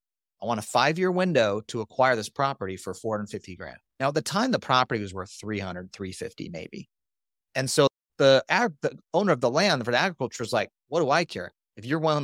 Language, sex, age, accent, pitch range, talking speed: English, male, 40-59, American, 105-150 Hz, 230 wpm